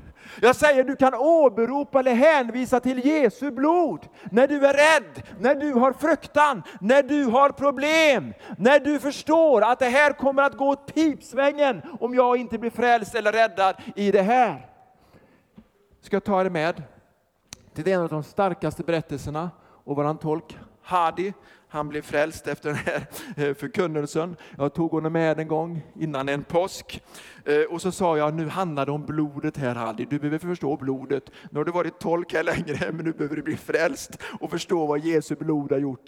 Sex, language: male, Swedish